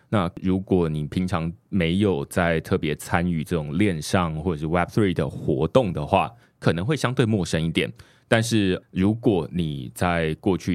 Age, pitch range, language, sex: 20-39, 80-100 Hz, Chinese, male